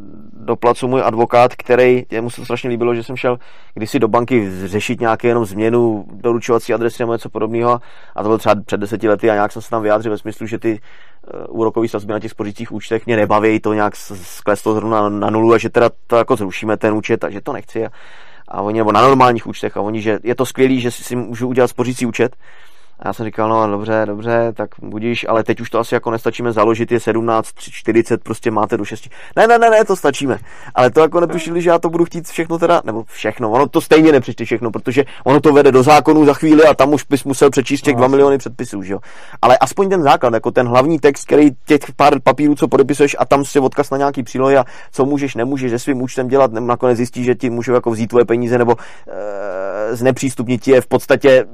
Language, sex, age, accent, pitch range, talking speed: Czech, male, 20-39, native, 110-135 Hz, 225 wpm